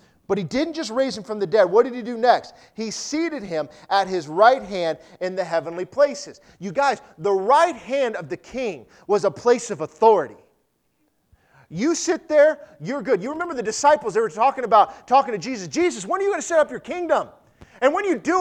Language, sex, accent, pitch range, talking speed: English, male, American, 195-320 Hz, 220 wpm